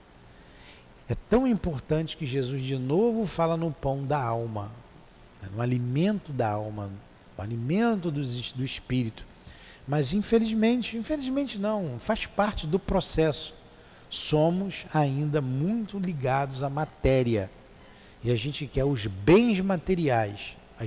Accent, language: Brazilian, Portuguese